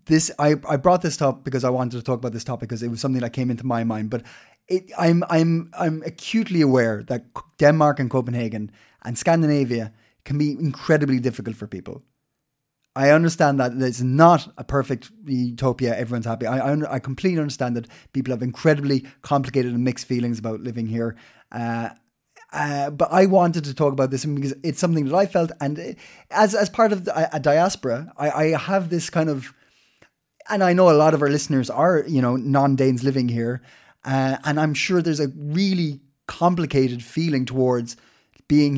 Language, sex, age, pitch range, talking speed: Danish, male, 20-39, 125-160 Hz, 190 wpm